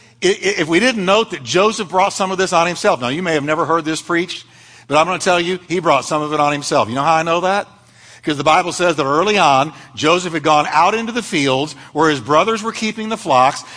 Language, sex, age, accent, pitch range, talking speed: English, male, 60-79, American, 145-205 Hz, 260 wpm